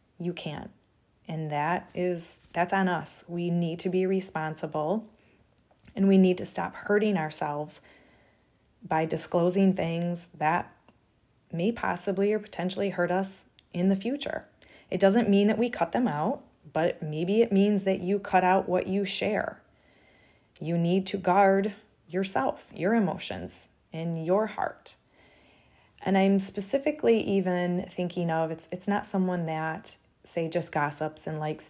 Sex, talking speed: female, 145 wpm